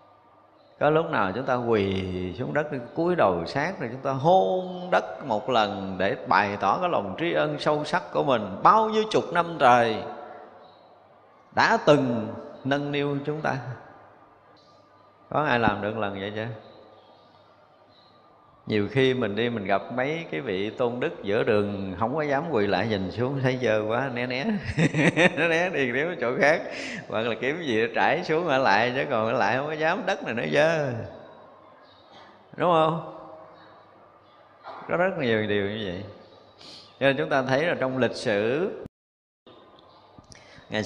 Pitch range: 105-150 Hz